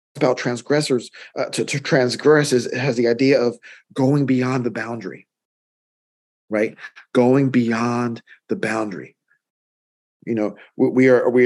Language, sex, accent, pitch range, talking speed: English, male, American, 120-140 Hz, 140 wpm